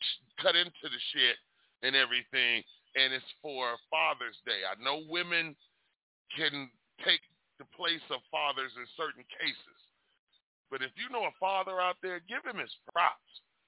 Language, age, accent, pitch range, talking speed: English, 30-49, American, 145-205 Hz, 155 wpm